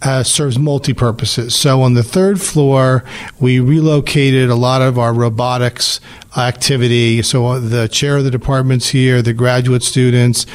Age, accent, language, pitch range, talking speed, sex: 40-59, American, English, 125-150 Hz, 150 wpm, male